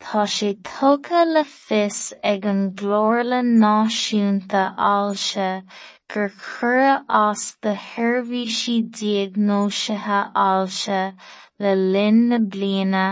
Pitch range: 195-220 Hz